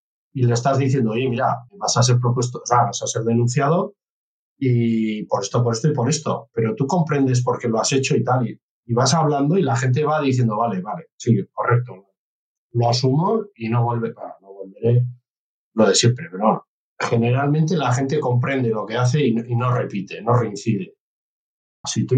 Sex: male